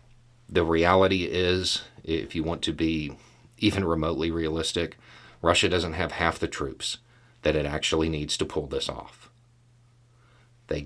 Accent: American